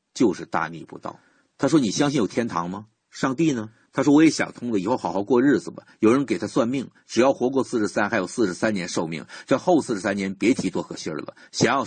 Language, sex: Chinese, male